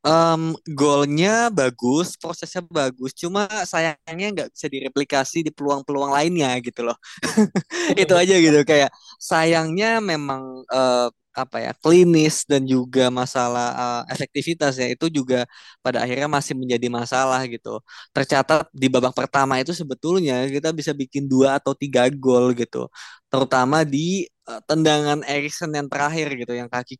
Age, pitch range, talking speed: 20-39, 125-165 Hz, 140 wpm